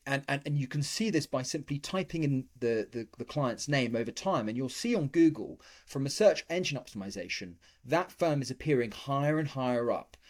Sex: male